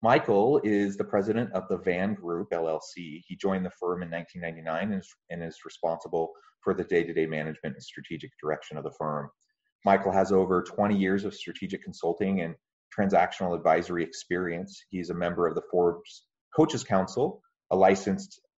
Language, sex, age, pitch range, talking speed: English, male, 30-49, 85-100 Hz, 170 wpm